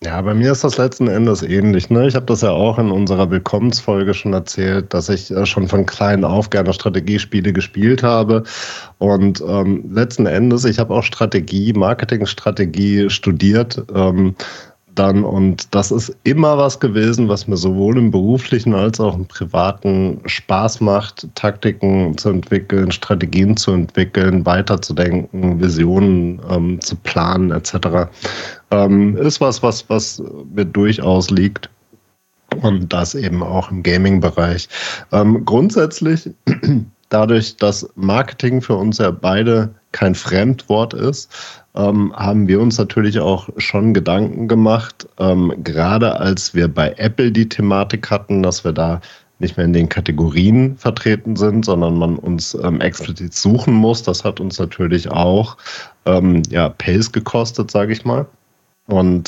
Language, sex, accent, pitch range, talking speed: German, male, German, 95-110 Hz, 145 wpm